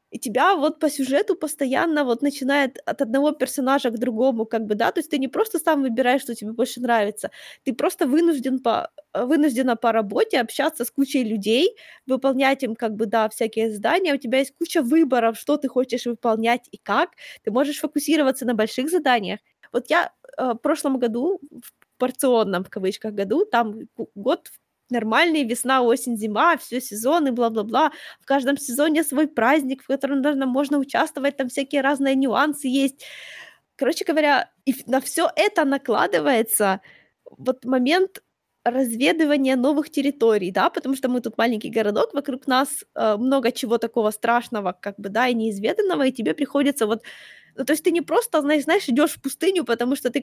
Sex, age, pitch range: female, 20-39, 235-295 Hz